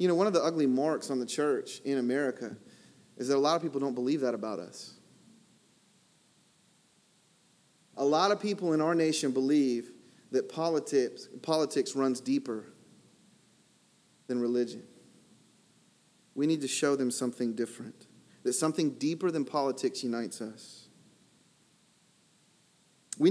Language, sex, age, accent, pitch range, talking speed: English, male, 30-49, American, 135-180 Hz, 135 wpm